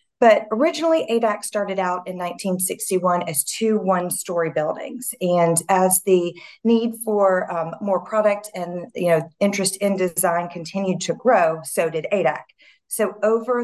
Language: English